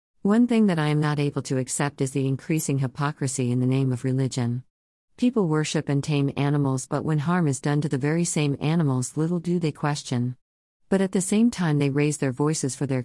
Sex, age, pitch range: female, 40-59, 130-160 Hz